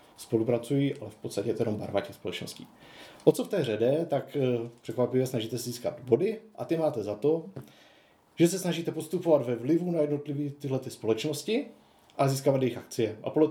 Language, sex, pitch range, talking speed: Czech, male, 120-155 Hz, 185 wpm